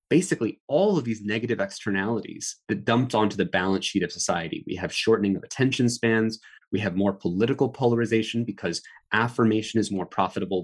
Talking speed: 170 wpm